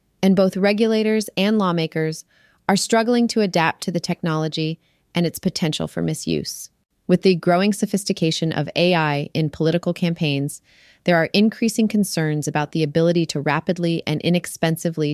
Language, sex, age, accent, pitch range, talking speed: English, female, 30-49, American, 150-180 Hz, 145 wpm